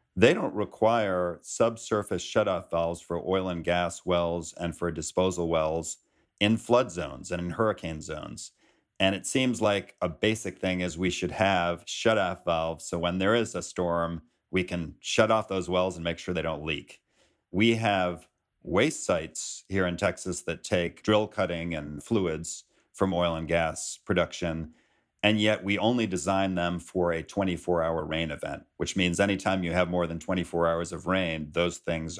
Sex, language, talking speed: male, English, 175 wpm